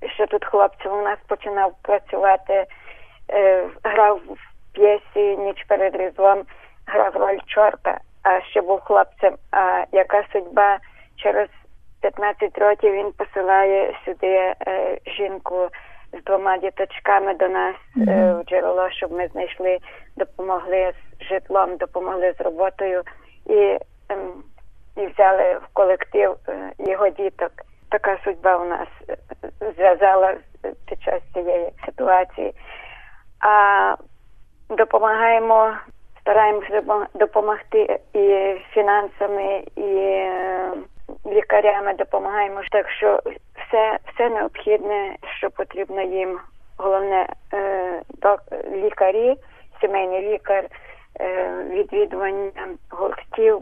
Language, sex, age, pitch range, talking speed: Ukrainian, female, 20-39, 190-210 Hz, 100 wpm